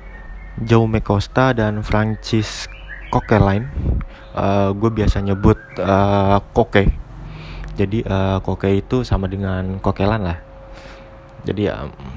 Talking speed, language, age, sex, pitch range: 100 wpm, Indonesian, 20-39, male, 95-110 Hz